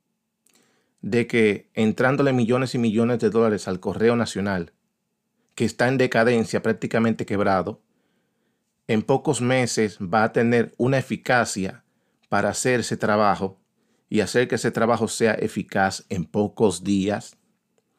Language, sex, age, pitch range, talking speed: Spanish, male, 40-59, 110-130 Hz, 130 wpm